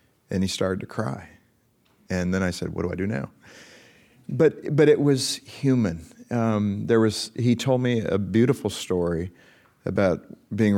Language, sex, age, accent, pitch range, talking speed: English, male, 40-59, American, 90-110 Hz, 165 wpm